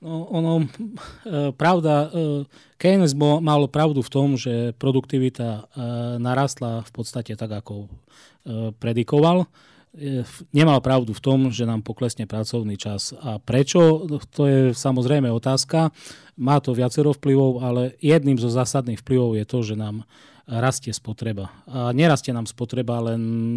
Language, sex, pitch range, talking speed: Slovak, male, 115-140 Hz, 130 wpm